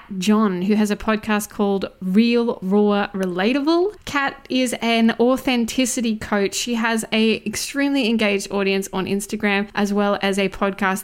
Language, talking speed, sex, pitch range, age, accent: English, 145 wpm, female, 200-245 Hz, 20-39, Australian